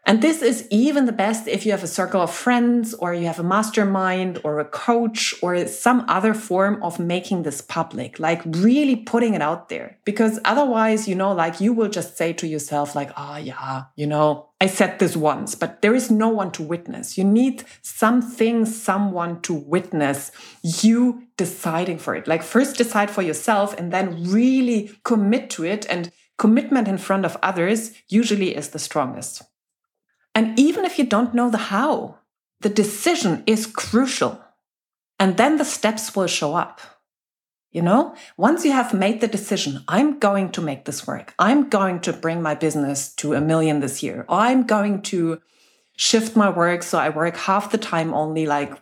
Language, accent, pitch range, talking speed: English, German, 165-225 Hz, 185 wpm